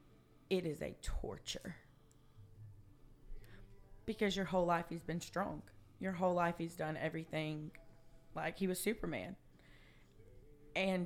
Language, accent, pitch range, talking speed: English, American, 150-195 Hz, 120 wpm